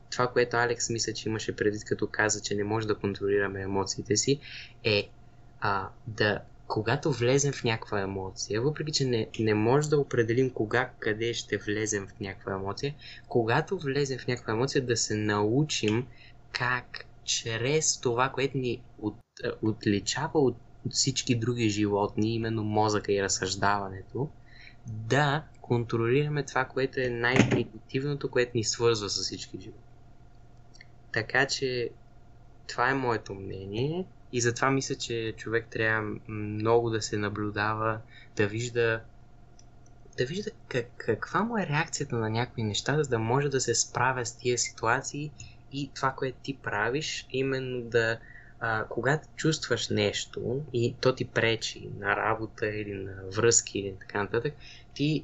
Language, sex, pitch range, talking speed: Bulgarian, male, 110-130 Hz, 145 wpm